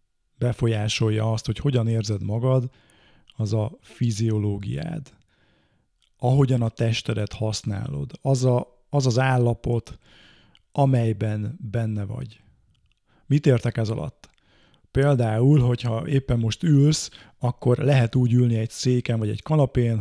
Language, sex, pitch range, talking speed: Hungarian, male, 115-130 Hz, 115 wpm